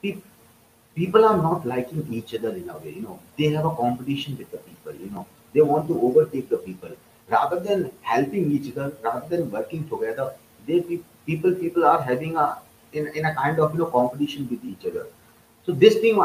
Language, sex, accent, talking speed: English, male, Indian, 205 wpm